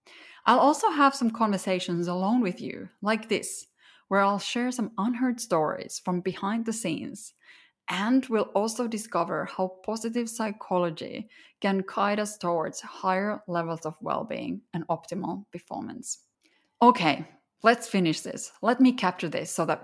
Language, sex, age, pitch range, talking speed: English, female, 20-39, 175-235 Hz, 145 wpm